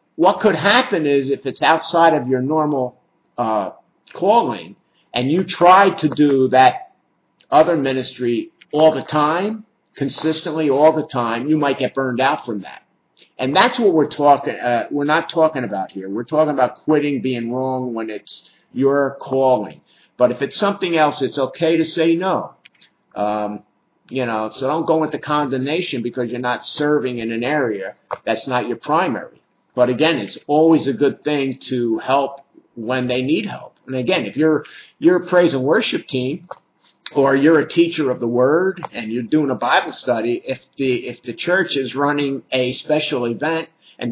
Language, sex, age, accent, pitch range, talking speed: English, male, 50-69, American, 130-160 Hz, 180 wpm